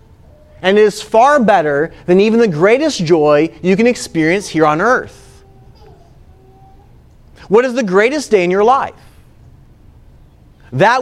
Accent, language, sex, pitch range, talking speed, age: American, English, male, 145-230 Hz, 135 wpm, 30-49